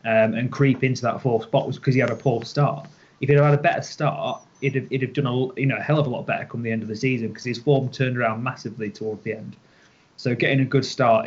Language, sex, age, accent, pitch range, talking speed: English, male, 20-39, British, 115-140 Hz, 295 wpm